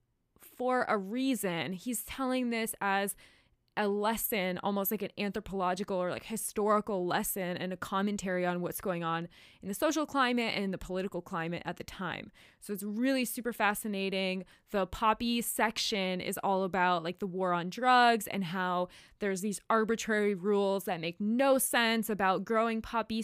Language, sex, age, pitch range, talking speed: English, female, 20-39, 190-225 Hz, 165 wpm